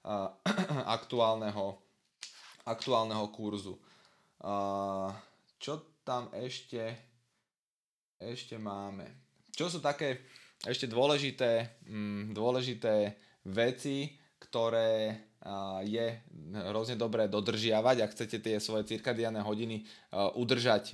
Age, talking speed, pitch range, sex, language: 20-39, 75 wpm, 105-125 Hz, male, Slovak